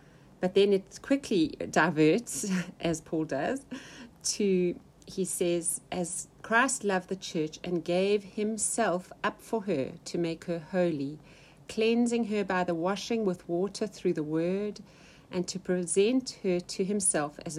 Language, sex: English, female